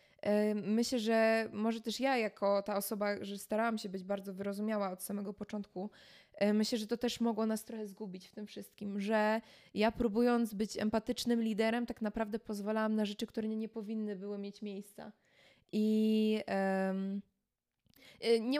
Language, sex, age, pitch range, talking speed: Polish, female, 20-39, 205-230 Hz, 150 wpm